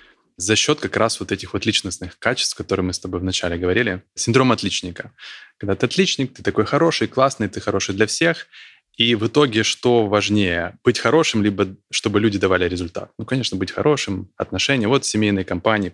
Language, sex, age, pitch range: Ukrainian, male, 20-39, 95-120 Hz